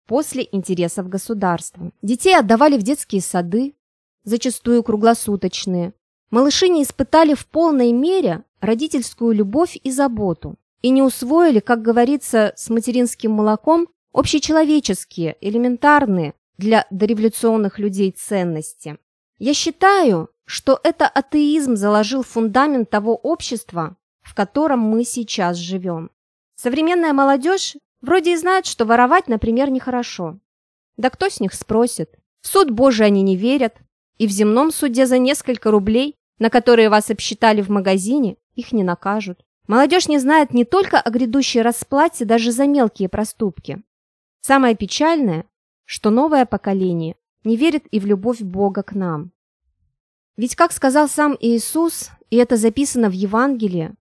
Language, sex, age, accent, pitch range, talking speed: Russian, female, 20-39, native, 205-280 Hz, 130 wpm